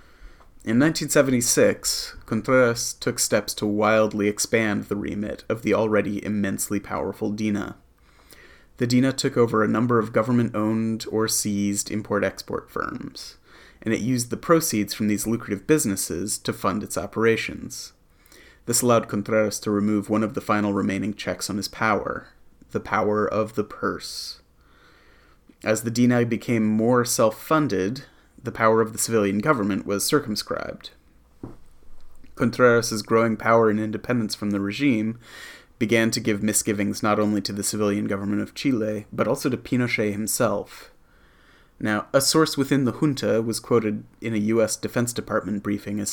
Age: 30-49